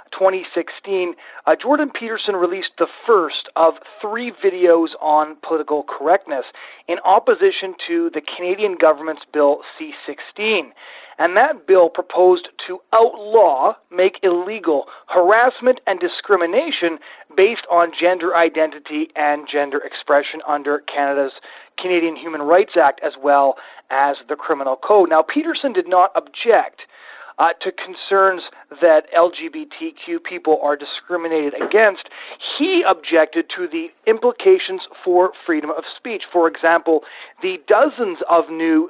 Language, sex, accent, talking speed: English, male, American, 125 wpm